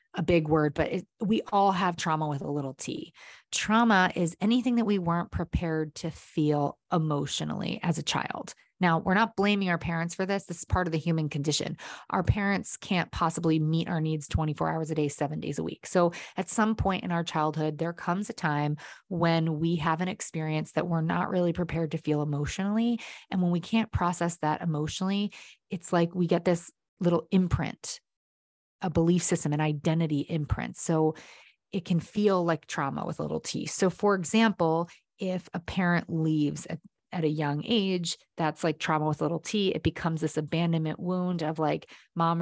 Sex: female